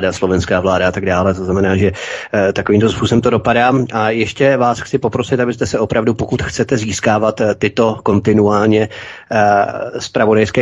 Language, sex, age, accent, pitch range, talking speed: Czech, male, 30-49, native, 100-115 Hz, 165 wpm